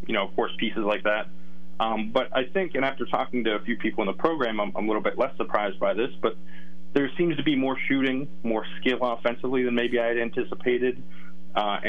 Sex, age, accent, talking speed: male, 30-49, American, 230 wpm